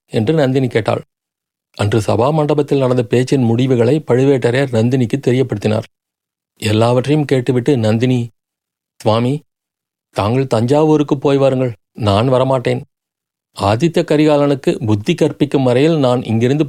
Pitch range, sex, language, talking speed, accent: 120-150 Hz, male, Tamil, 100 wpm, native